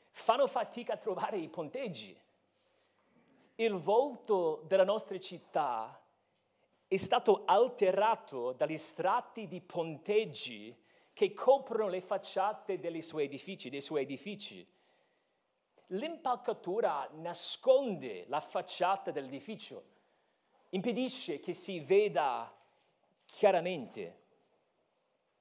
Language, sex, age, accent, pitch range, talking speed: Italian, male, 40-59, native, 190-260 Hz, 85 wpm